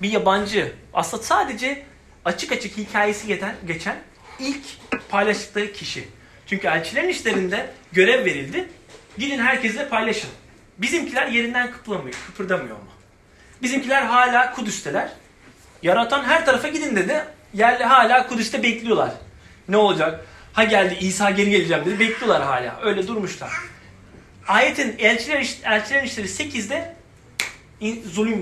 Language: Turkish